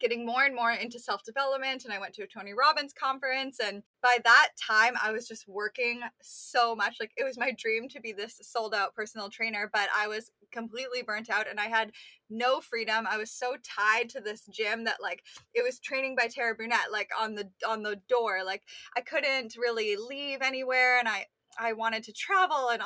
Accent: American